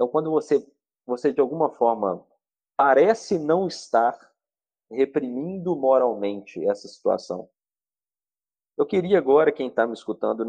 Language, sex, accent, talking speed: Portuguese, male, Brazilian, 120 wpm